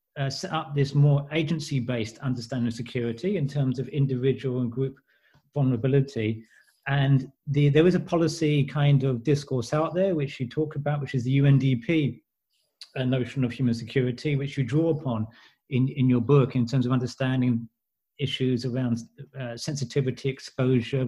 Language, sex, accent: English, male, British